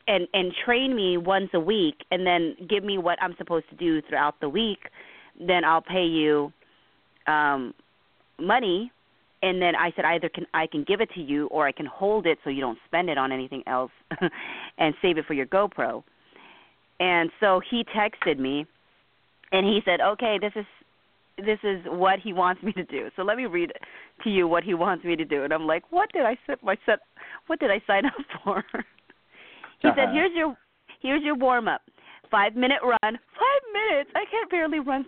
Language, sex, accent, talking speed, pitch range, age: English, female, American, 200 wpm, 170-220 Hz, 30-49